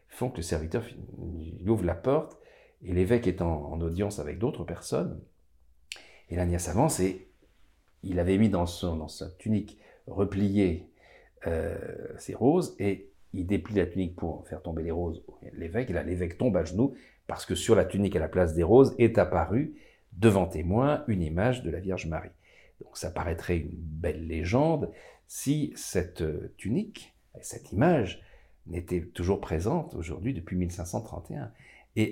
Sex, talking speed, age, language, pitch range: male, 165 wpm, 50-69, French, 85-105 Hz